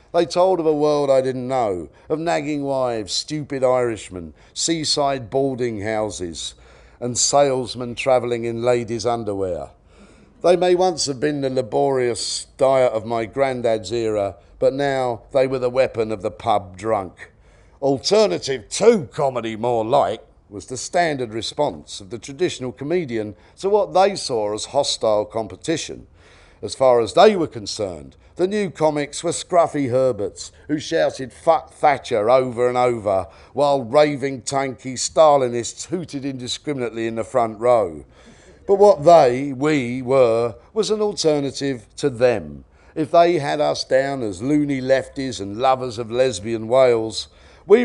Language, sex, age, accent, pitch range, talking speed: English, male, 50-69, British, 115-150 Hz, 145 wpm